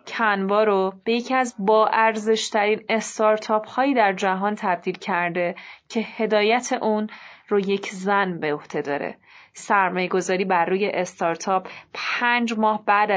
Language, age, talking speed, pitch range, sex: Persian, 30-49, 130 wpm, 185-220 Hz, female